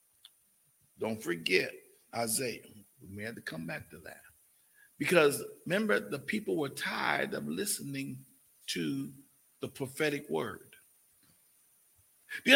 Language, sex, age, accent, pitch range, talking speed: English, male, 50-69, American, 185-280 Hz, 115 wpm